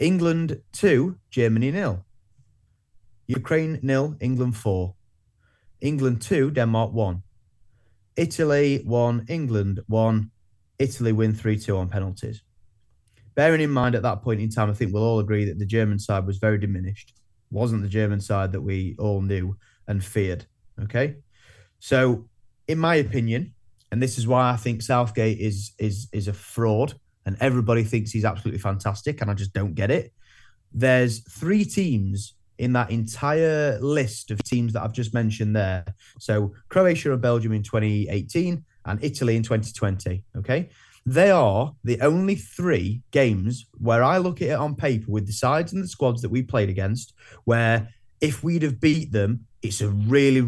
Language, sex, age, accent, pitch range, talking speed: English, male, 30-49, British, 105-130 Hz, 165 wpm